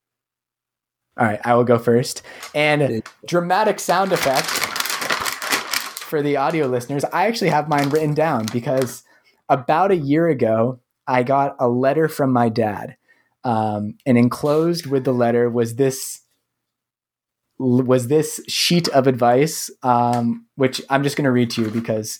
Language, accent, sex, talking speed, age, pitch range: English, American, male, 150 wpm, 20-39, 115-145 Hz